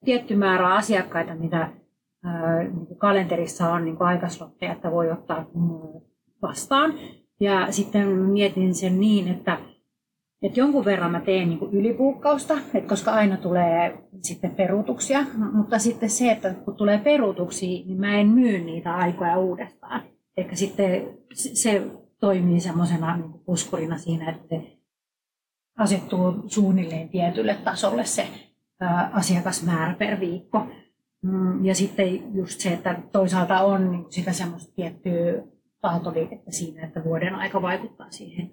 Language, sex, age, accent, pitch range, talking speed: Finnish, female, 30-49, native, 175-210 Hz, 120 wpm